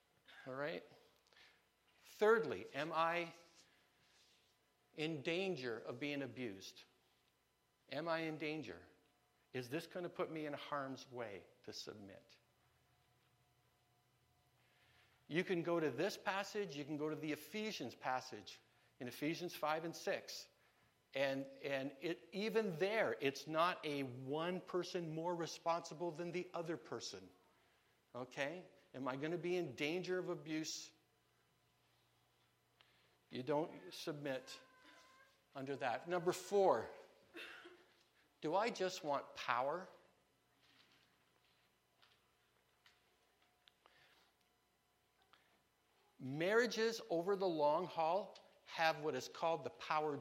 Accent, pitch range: American, 140-180 Hz